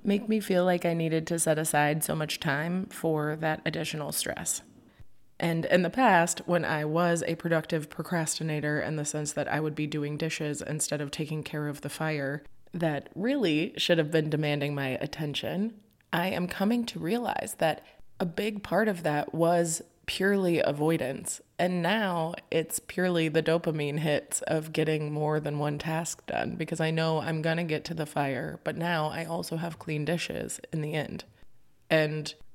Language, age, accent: English, 20-39, American